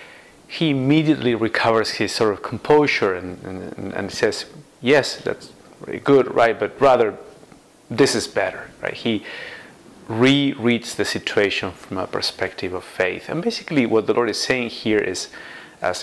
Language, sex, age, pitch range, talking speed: English, male, 30-49, 105-135 Hz, 155 wpm